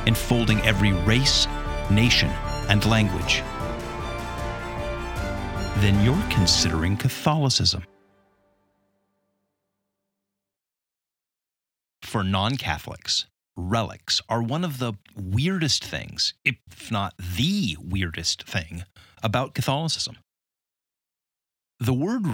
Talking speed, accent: 75 wpm, American